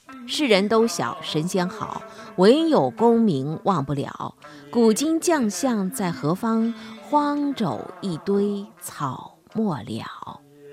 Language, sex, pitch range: Chinese, female, 145-230 Hz